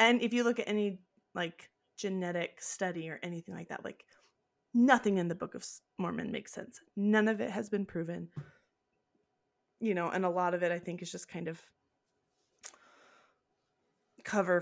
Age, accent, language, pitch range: 20-39, American, English, 180-210 Hz